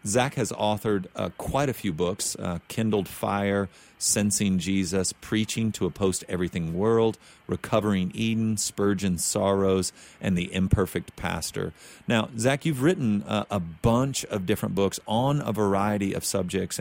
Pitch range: 95-110 Hz